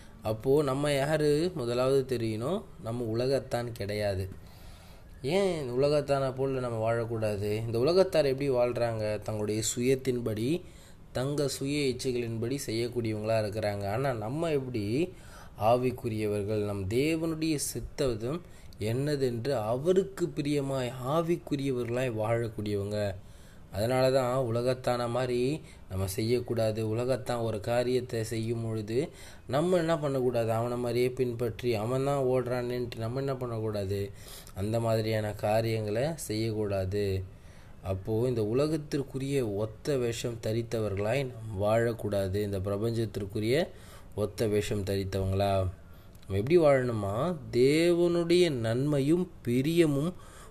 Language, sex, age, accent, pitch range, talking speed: Tamil, male, 20-39, native, 105-135 Hz, 95 wpm